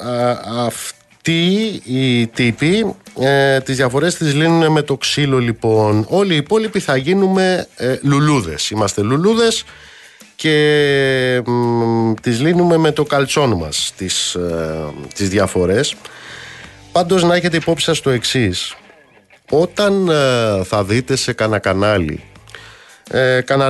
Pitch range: 110-140 Hz